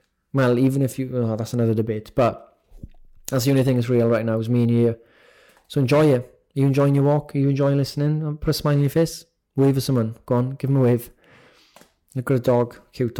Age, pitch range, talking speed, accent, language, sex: 20-39, 120-140 Hz, 240 wpm, British, English, male